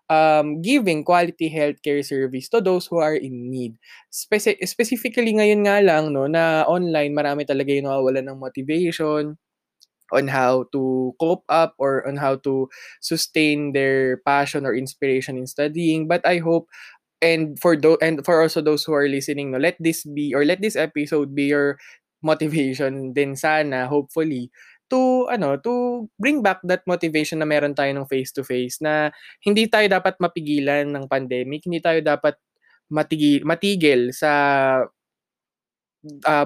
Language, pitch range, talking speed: Filipino, 140-185 Hz, 155 wpm